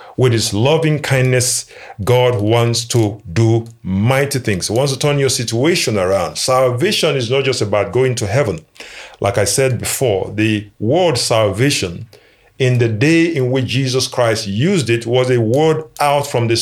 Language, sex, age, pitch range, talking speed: English, male, 50-69, 105-130 Hz, 170 wpm